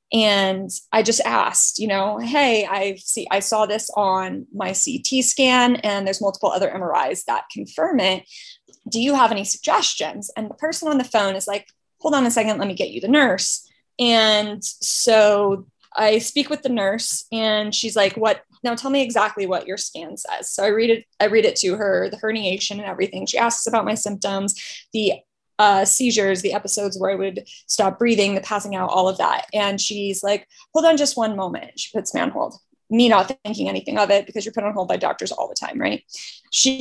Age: 20-39